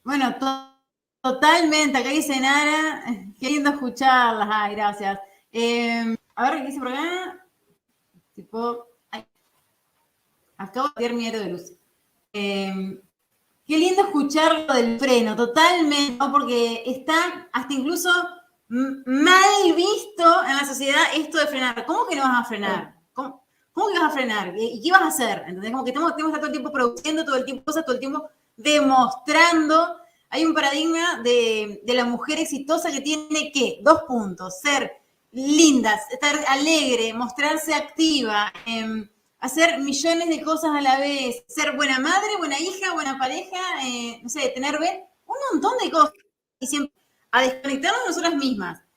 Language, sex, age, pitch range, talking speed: Spanish, female, 30-49, 245-320 Hz, 160 wpm